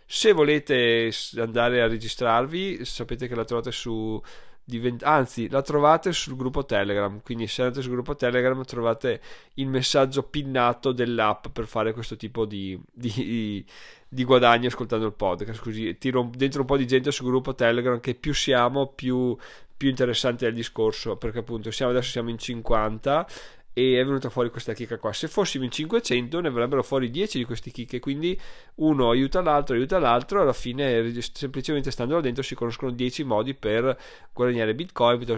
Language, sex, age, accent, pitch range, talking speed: Italian, male, 20-39, native, 115-135 Hz, 175 wpm